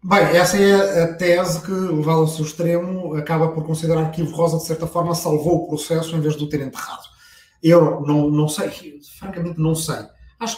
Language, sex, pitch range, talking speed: Portuguese, male, 135-170 Hz, 210 wpm